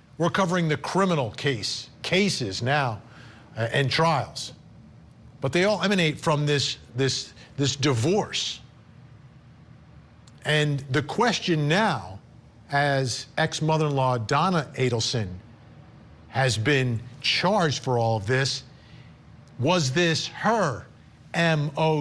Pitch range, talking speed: 130-175 Hz, 110 wpm